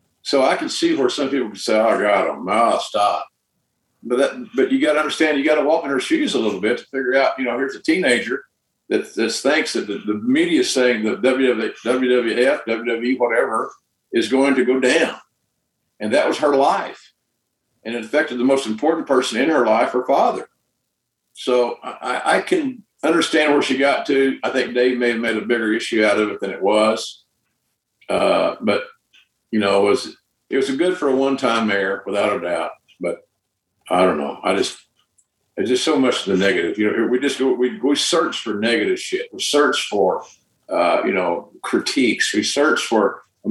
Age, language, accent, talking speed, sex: 50-69, English, American, 210 wpm, male